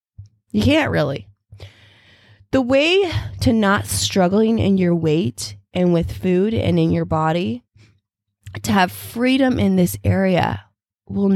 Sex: female